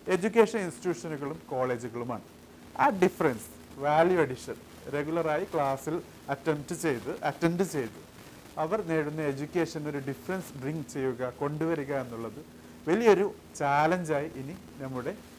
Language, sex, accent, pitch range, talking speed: Malayalam, male, native, 130-160 Hz, 100 wpm